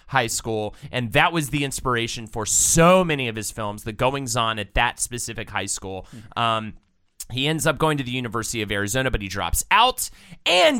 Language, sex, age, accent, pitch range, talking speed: English, male, 30-49, American, 115-160 Hz, 195 wpm